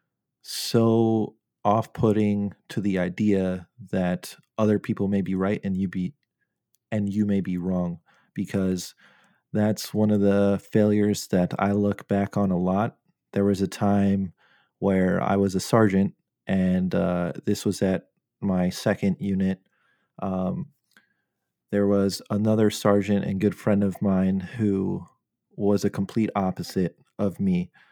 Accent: American